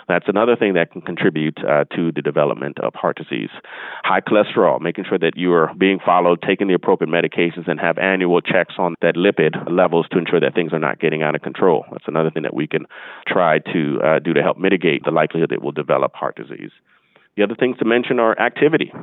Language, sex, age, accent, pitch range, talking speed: English, male, 30-49, American, 85-105 Hz, 225 wpm